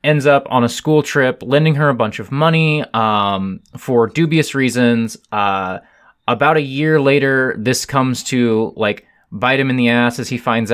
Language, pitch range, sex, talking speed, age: English, 110-140 Hz, male, 185 wpm, 20-39